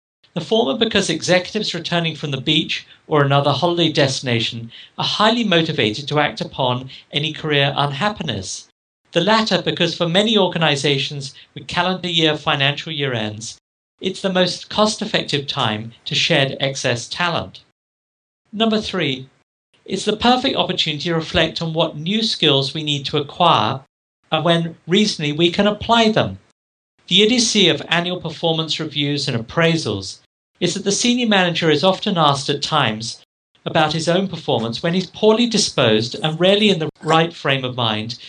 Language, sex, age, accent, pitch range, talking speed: English, male, 50-69, British, 140-185 Hz, 155 wpm